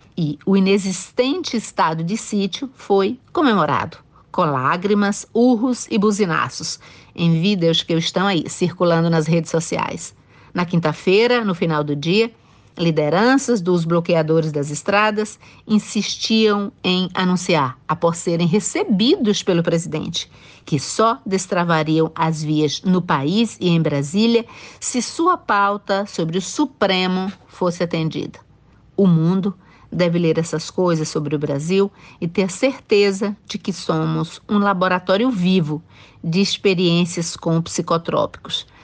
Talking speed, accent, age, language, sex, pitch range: 125 wpm, Brazilian, 50-69, Portuguese, female, 160-200 Hz